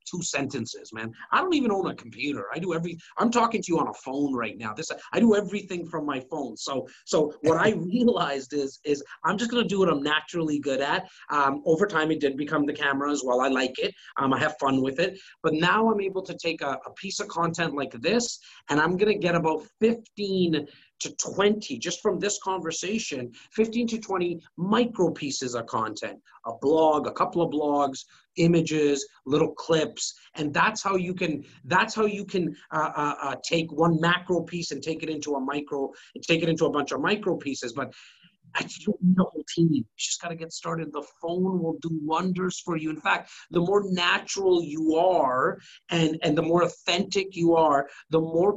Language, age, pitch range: English, 30-49, 150-195 Hz